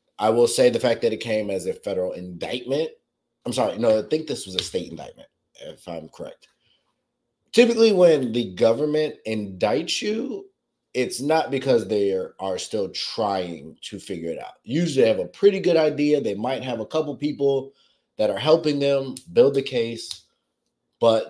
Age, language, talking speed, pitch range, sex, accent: 30-49, English, 180 wpm, 115-150 Hz, male, American